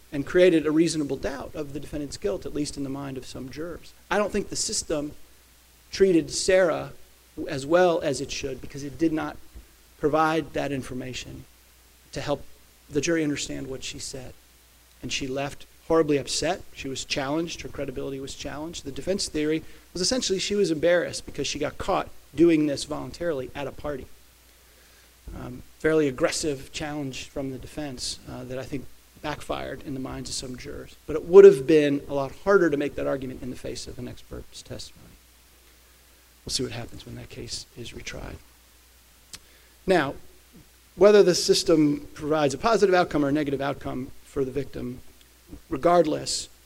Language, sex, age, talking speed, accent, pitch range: English, male, 40-59, 175 wpm, American, 90-155 Hz